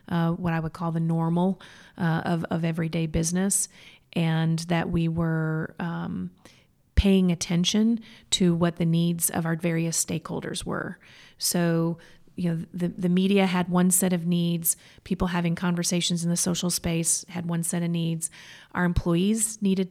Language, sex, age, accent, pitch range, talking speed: English, female, 30-49, American, 170-185 Hz, 165 wpm